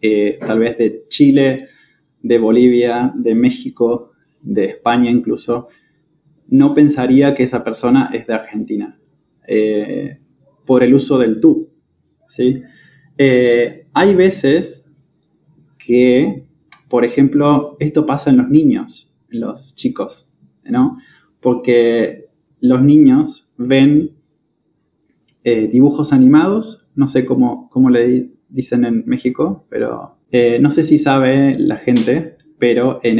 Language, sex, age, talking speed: English, male, 20-39, 125 wpm